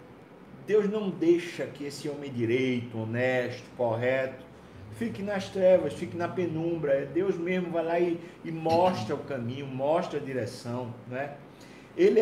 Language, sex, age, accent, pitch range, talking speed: Portuguese, male, 50-69, Brazilian, 135-175 Hz, 140 wpm